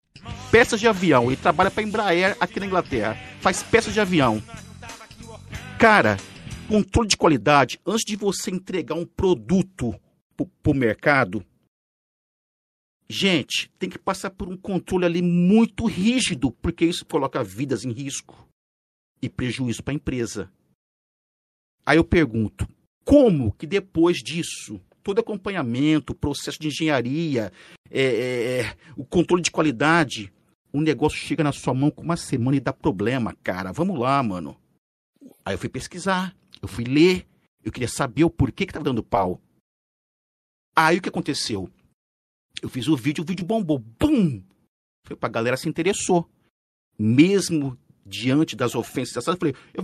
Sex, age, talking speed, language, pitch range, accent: male, 50-69, 150 wpm, Portuguese, 125-185 Hz, Brazilian